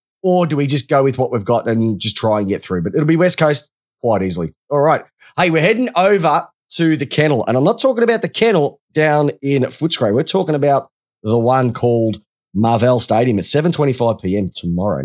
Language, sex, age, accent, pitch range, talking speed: English, male, 30-49, Australian, 110-150 Hz, 210 wpm